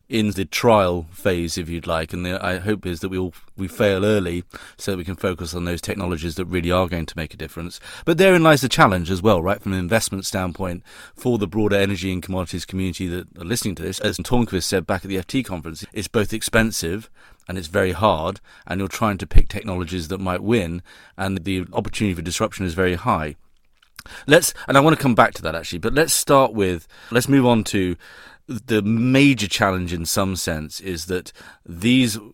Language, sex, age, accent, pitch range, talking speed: English, male, 30-49, British, 90-110 Hz, 215 wpm